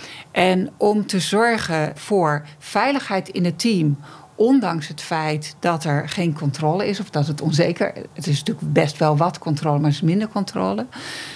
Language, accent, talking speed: Dutch, Dutch, 175 wpm